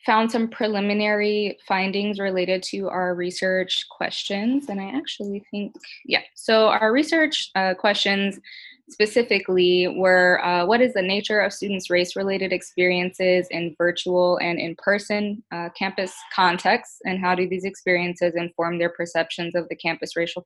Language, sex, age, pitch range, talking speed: English, female, 20-39, 175-205 Hz, 140 wpm